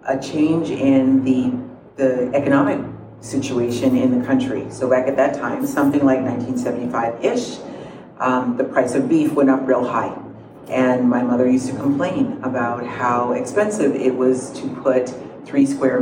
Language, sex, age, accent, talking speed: English, female, 40-59, American, 155 wpm